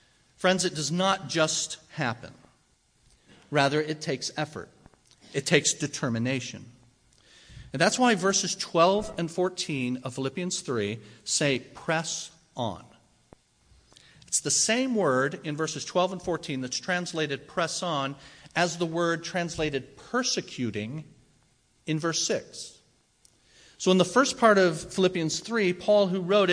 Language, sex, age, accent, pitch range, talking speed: English, male, 40-59, American, 150-190 Hz, 130 wpm